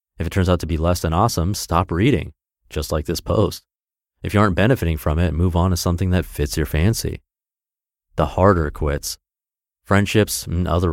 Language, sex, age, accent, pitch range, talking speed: English, male, 30-49, American, 80-100 Hz, 190 wpm